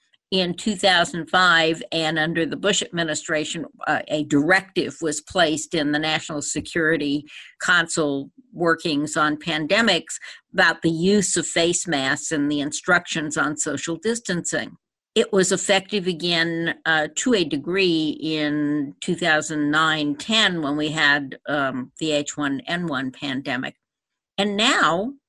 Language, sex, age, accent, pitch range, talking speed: English, female, 60-79, American, 155-215 Hz, 120 wpm